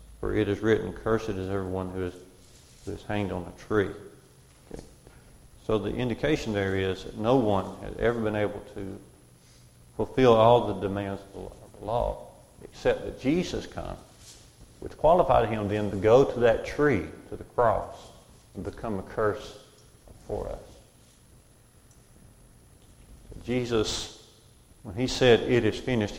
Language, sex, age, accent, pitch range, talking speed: English, male, 50-69, American, 100-115 Hz, 145 wpm